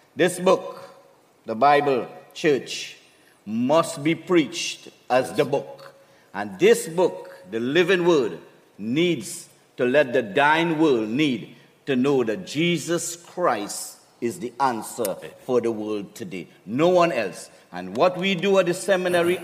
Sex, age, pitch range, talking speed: male, 50-69, 145-185 Hz, 140 wpm